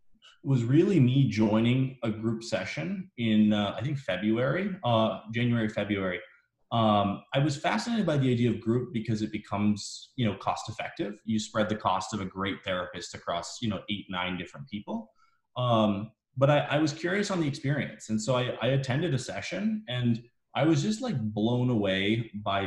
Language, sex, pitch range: English, male, 105-130 Hz